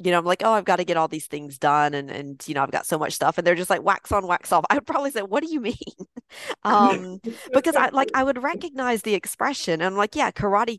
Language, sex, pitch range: English, female, 155-225 Hz